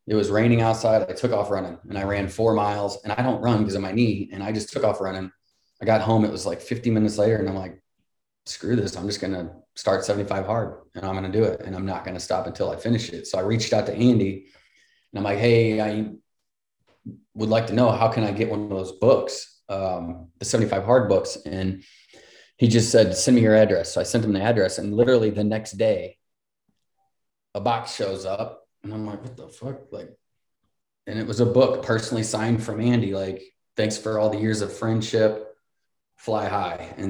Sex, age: male, 30-49